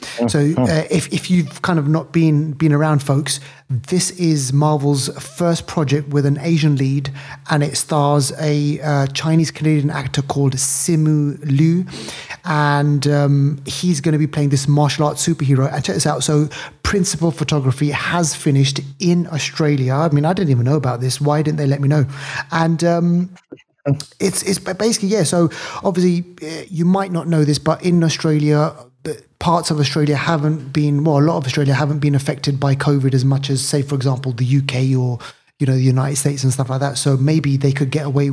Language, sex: English, male